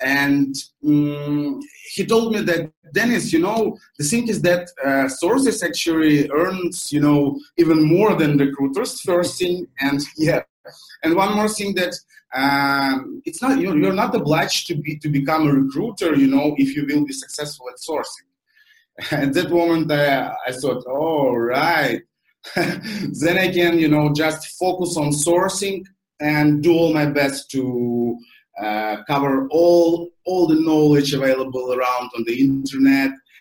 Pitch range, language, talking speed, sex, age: 140-180 Hz, English, 165 wpm, male, 30-49